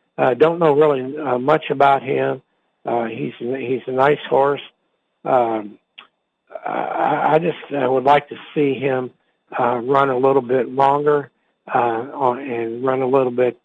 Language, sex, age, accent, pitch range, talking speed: English, male, 60-79, American, 120-135 Hz, 160 wpm